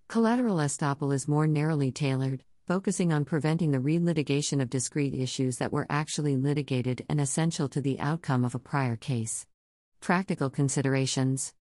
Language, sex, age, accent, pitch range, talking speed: English, female, 50-69, American, 130-160 Hz, 150 wpm